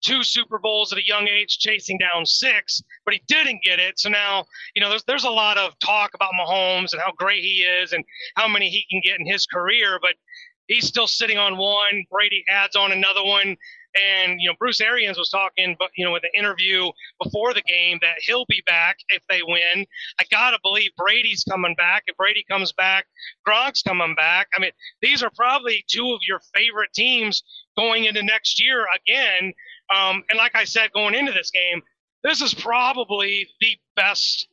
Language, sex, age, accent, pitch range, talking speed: English, male, 30-49, American, 190-230 Hz, 205 wpm